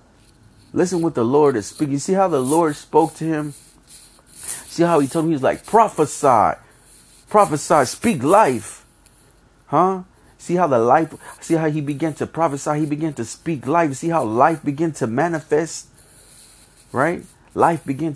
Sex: male